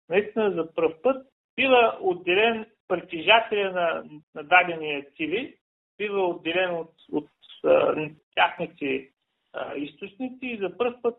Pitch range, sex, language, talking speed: 165-225 Hz, male, Bulgarian, 125 wpm